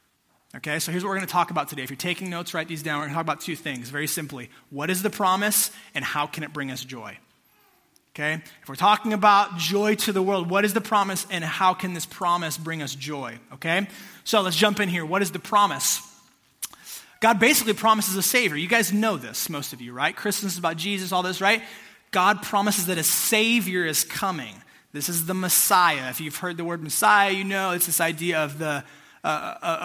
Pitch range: 165-205 Hz